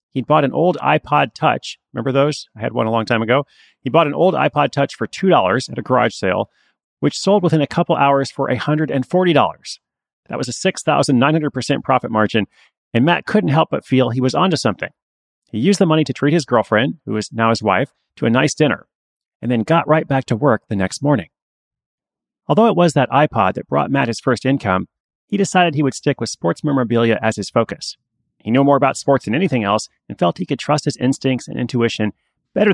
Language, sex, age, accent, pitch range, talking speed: English, male, 30-49, American, 115-155 Hz, 215 wpm